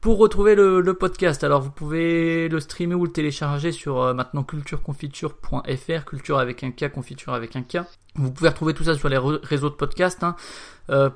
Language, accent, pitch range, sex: French, French, 130-160 Hz, male